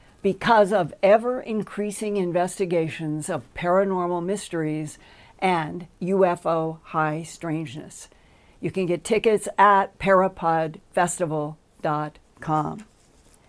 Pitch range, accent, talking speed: 165-195 Hz, American, 75 wpm